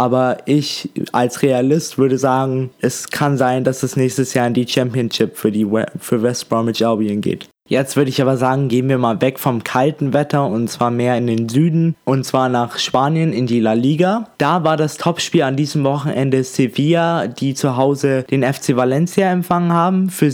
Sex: male